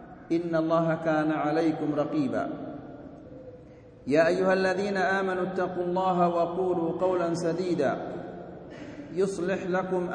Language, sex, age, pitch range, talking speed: Malay, male, 50-69, 165-185 Hz, 95 wpm